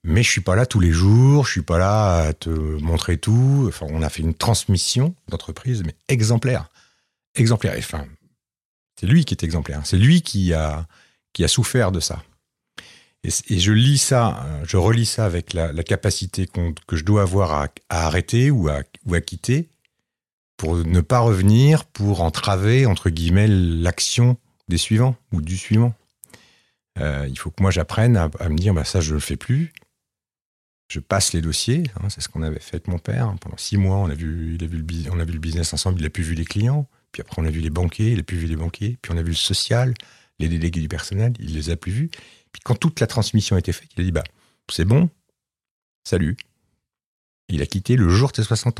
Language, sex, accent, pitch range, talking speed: French, male, French, 80-115 Hz, 230 wpm